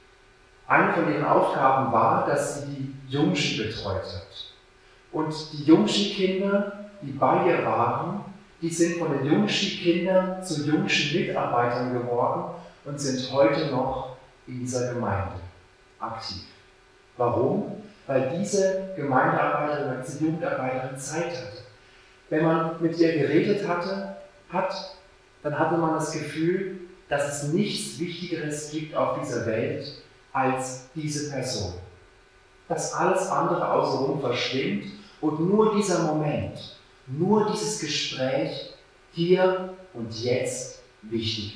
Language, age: German, 40-59